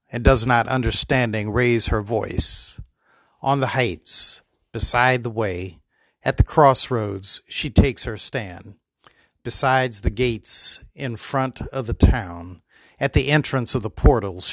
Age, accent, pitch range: 50-69, American, 100-130 Hz